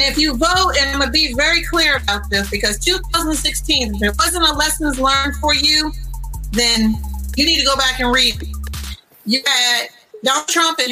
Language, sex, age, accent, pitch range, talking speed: English, female, 40-59, American, 240-310 Hz, 190 wpm